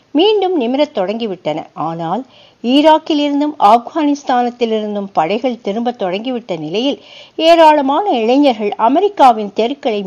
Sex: female